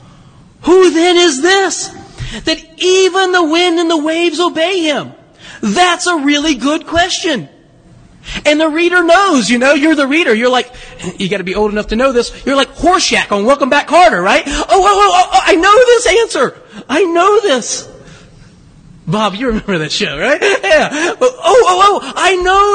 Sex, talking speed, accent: male, 180 wpm, American